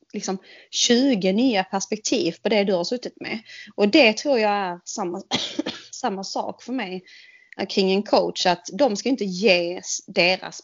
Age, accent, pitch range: 30-49, Swedish, 185-240 Hz